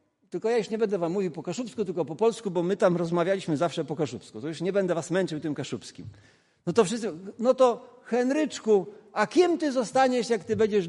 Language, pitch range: Polish, 150-240 Hz